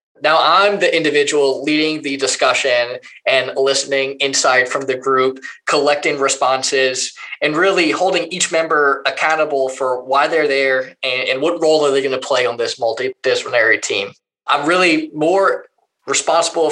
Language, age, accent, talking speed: English, 20-39, American, 145 wpm